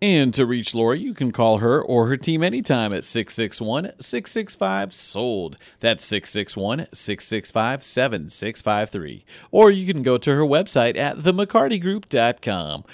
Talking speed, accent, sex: 115 wpm, American, male